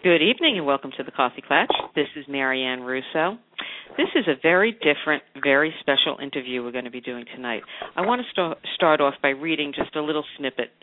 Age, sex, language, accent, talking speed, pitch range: 50-69, female, English, American, 205 wpm, 135-170 Hz